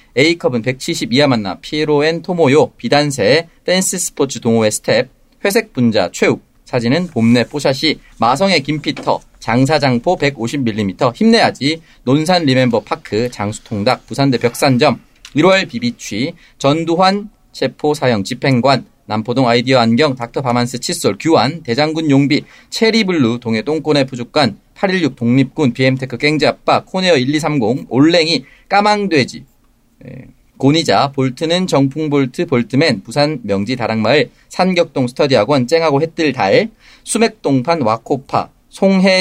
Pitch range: 125-170 Hz